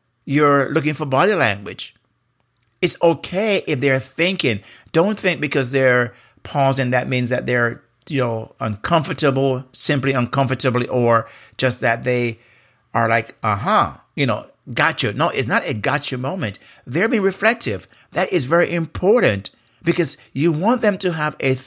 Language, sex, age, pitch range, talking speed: English, male, 50-69, 120-145 Hz, 150 wpm